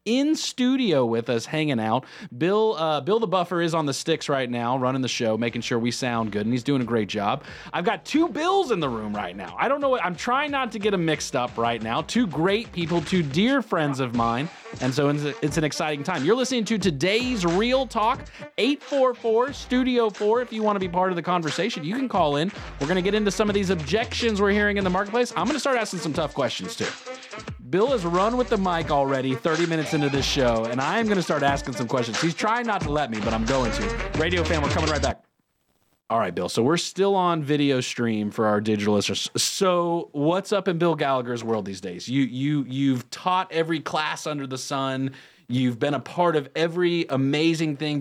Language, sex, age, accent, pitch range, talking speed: English, male, 30-49, American, 125-195 Hz, 240 wpm